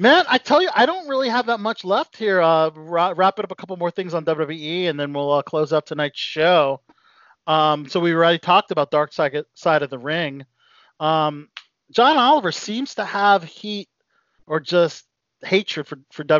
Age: 40-59